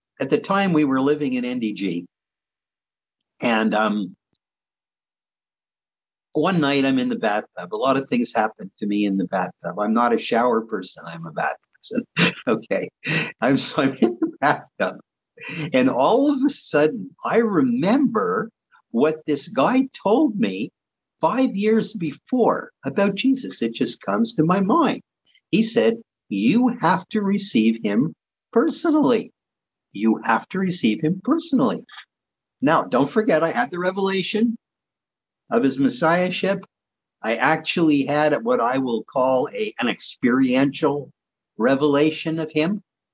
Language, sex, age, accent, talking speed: English, male, 50-69, American, 140 wpm